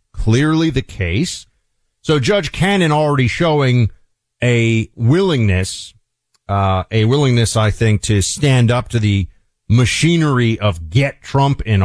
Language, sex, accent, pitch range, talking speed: English, male, American, 105-135 Hz, 125 wpm